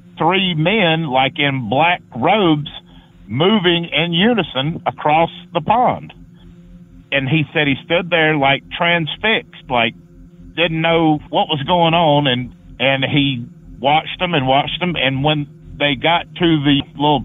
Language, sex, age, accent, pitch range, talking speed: English, male, 50-69, American, 115-160 Hz, 145 wpm